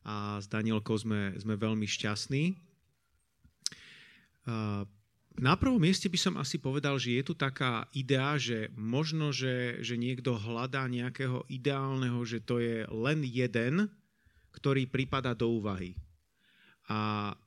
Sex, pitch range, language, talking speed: male, 115-135 Hz, Slovak, 125 wpm